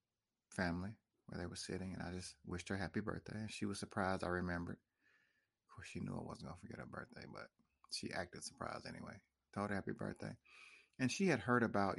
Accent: American